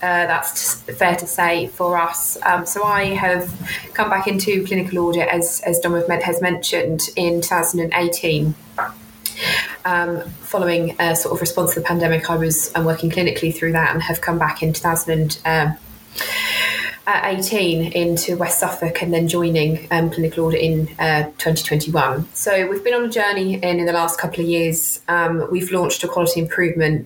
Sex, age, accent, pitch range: female, 20-39, British, 165-190 Hz